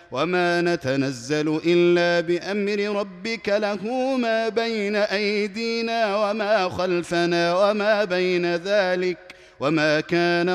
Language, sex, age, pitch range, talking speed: Arabic, male, 30-49, 135-180 Hz, 90 wpm